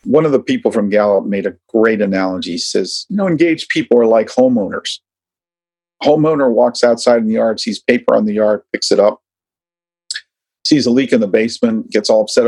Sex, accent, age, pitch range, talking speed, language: male, American, 50-69, 105-155 Hz, 200 wpm, English